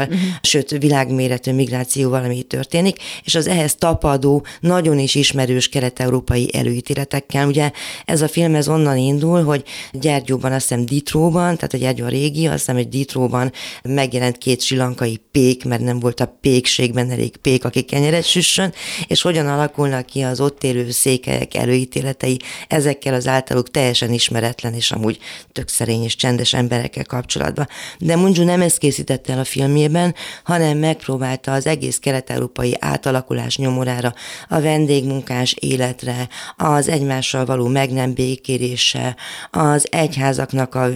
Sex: female